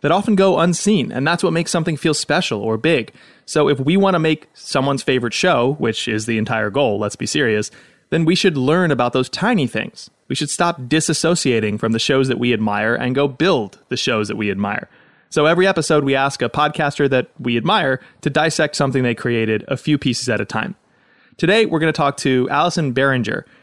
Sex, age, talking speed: male, 20-39, 215 wpm